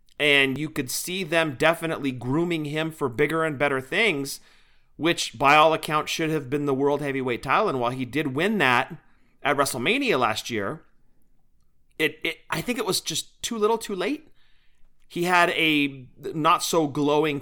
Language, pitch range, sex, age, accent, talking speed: English, 135-175 Hz, male, 40-59, American, 175 wpm